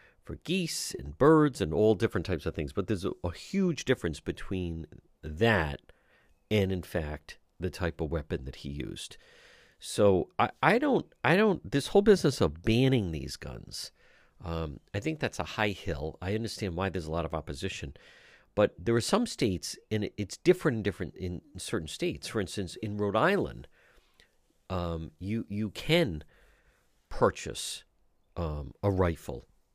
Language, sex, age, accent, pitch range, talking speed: English, male, 50-69, American, 85-115 Hz, 165 wpm